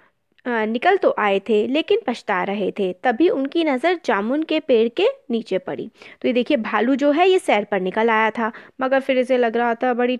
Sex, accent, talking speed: female, native, 210 wpm